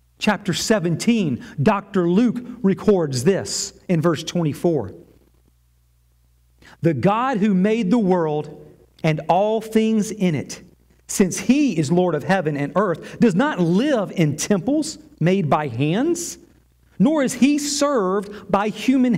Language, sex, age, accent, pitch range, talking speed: English, male, 40-59, American, 150-225 Hz, 130 wpm